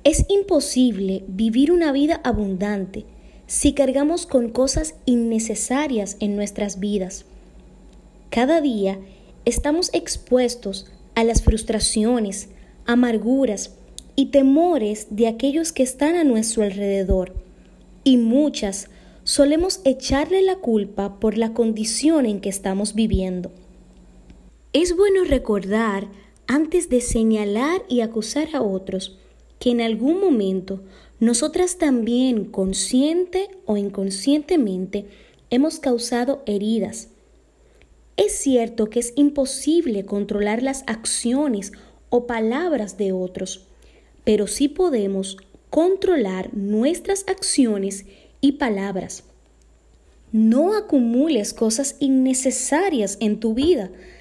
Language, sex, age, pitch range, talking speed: Spanish, female, 20-39, 200-280 Hz, 105 wpm